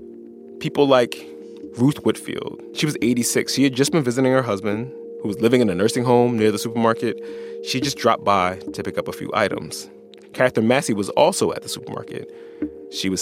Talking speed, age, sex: 195 wpm, 20-39, male